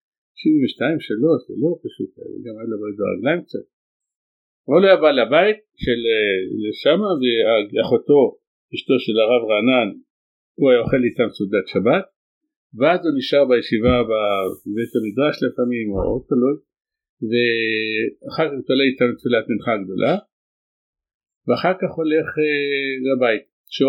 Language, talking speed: Hebrew, 125 wpm